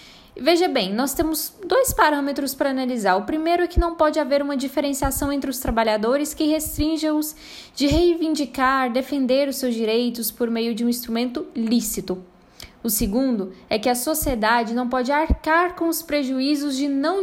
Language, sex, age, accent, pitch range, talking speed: Portuguese, female, 10-29, Brazilian, 230-295 Hz, 165 wpm